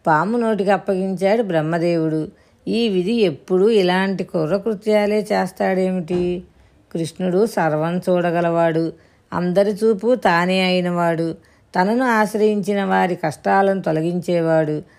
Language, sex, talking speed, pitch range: Telugu, female, 90 wpm, 170-210 Hz